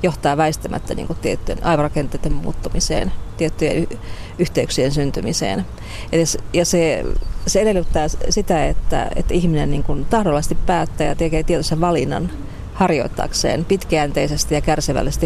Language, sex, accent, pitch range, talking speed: Finnish, female, native, 135-170 Hz, 120 wpm